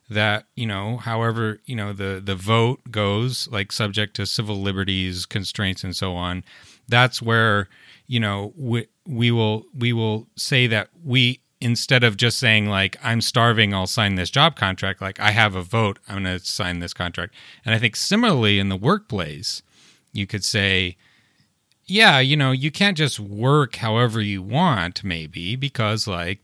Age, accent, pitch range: 30-49, American, 95-120 Hz